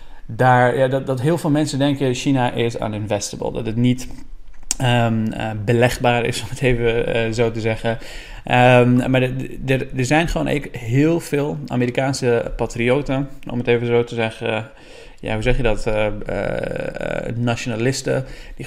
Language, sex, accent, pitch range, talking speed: Dutch, male, Dutch, 115-130 Hz, 160 wpm